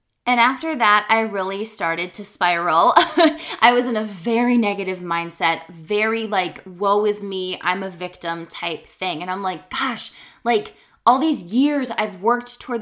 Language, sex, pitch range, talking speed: English, female, 185-230 Hz, 170 wpm